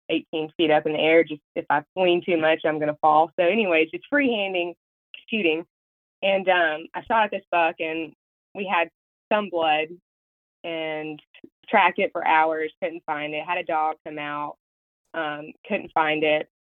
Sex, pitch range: female, 150-180 Hz